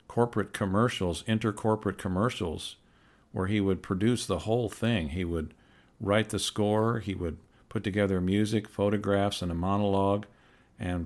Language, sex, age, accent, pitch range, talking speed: English, male, 50-69, American, 90-105 Hz, 140 wpm